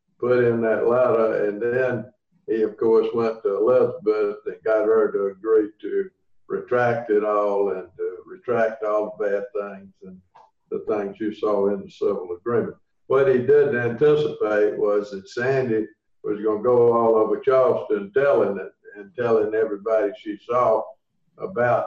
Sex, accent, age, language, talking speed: male, American, 50-69, English, 160 wpm